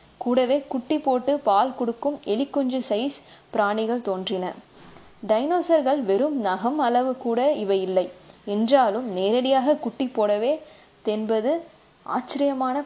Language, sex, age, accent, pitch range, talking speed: English, female, 20-39, Indian, 200-255 Hz, 90 wpm